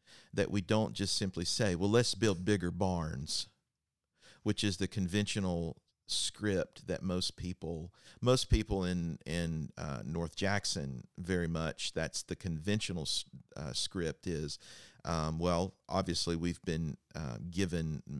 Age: 50-69